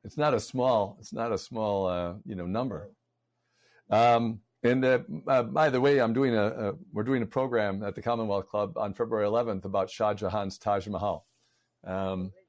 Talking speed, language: 190 wpm, English